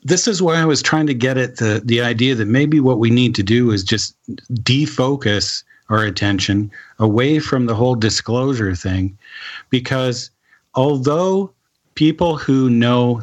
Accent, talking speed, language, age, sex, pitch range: American, 160 wpm, English, 50-69, male, 110-135 Hz